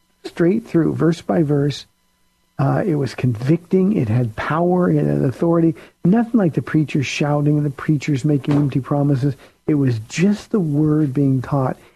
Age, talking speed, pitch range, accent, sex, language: 50-69, 160 wpm, 135-155 Hz, American, male, English